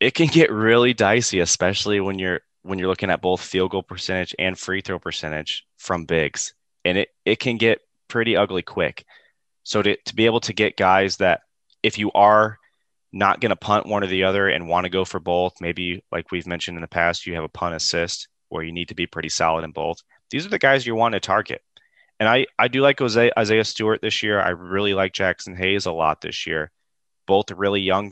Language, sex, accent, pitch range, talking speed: English, male, American, 85-100 Hz, 225 wpm